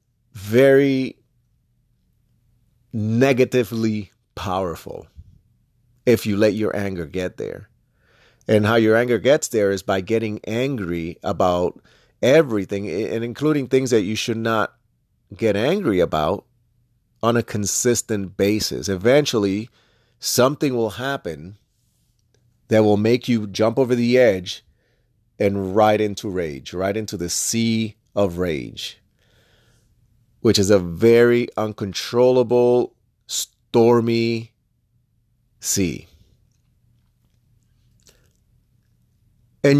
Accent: American